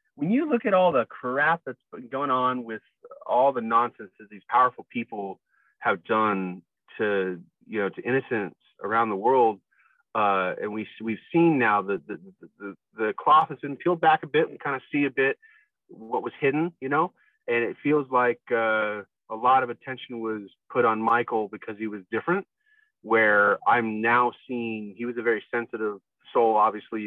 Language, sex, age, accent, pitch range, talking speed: English, male, 30-49, American, 105-145 Hz, 190 wpm